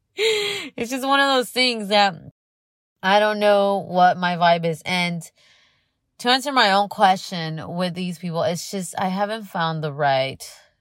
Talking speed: 165 wpm